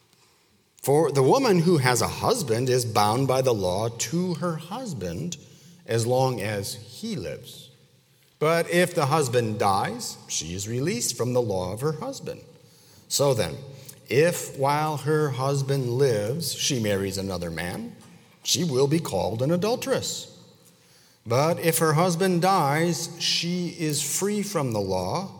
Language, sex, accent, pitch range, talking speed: English, male, American, 125-165 Hz, 145 wpm